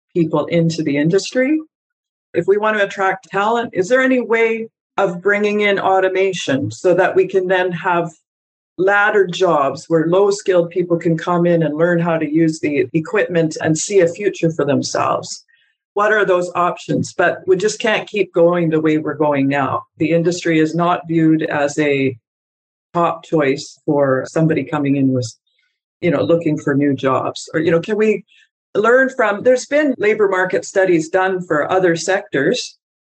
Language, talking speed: English, 175 wpm